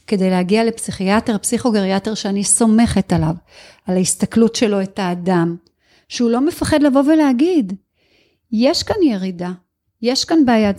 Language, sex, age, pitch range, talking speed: Hebrew, female, 40-59, 200-270 Hz, 130 wpm